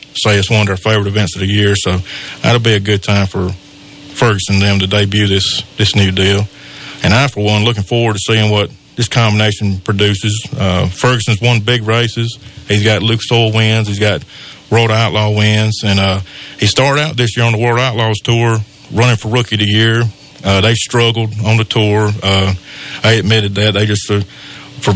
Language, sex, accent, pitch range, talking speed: English, male, American, 100-115 Hz, 205 wpm